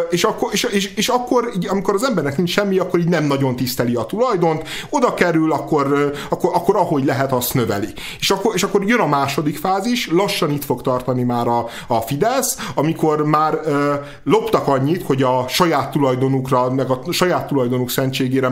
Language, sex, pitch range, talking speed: Hungarian, male, 125-175 Hz, 170 wpm